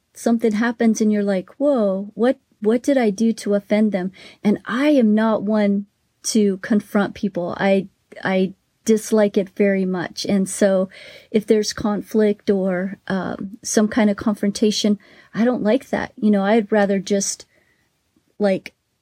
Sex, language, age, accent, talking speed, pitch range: female, English, 30-49, American, 155 wpm, 195-220 Hz